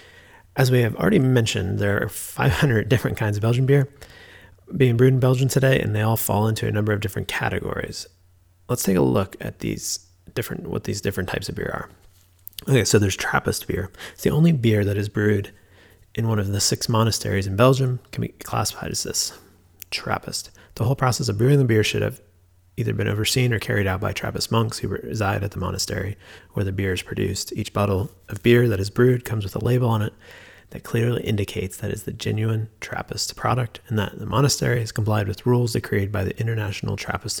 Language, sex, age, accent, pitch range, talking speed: English, male, 30-49, American, 95-115 Hz, 210 wpm